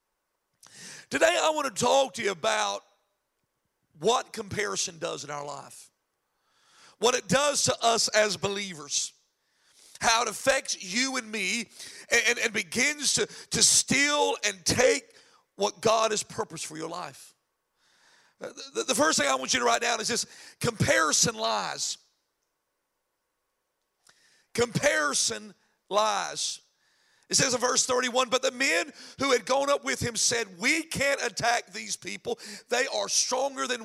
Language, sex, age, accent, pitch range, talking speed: English, male, 50-69, American, 205-310 Hz, 145 wpm